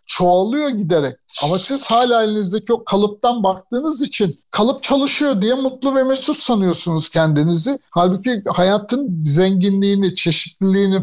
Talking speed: 120 wpm